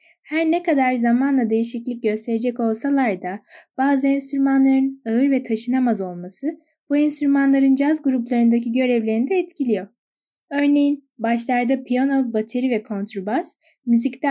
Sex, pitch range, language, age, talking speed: female, 225-270 Hz, Turkish, 10-29, 115 wpm